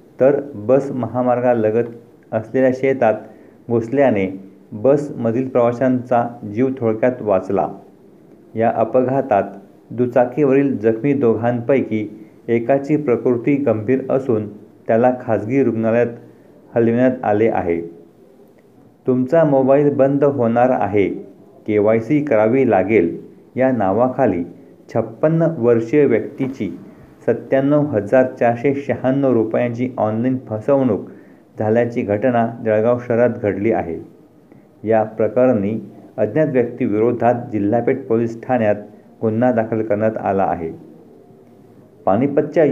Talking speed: 95 wpm